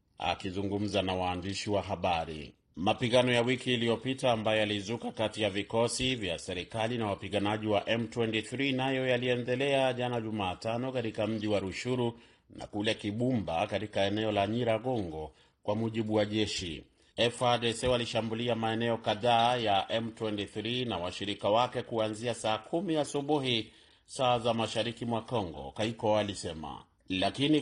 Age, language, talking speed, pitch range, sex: 30-49, Swahili, 135 wpm, 100-120 Hz, male